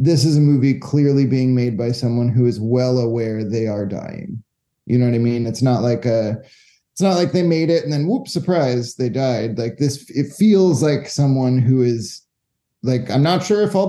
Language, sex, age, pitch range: English, male, 30-49, 115-145 Hz